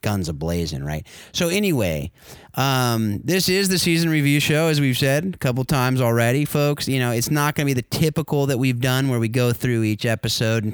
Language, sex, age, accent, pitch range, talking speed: English, male, 30-49, American, 110-130 Hz, 220 wpm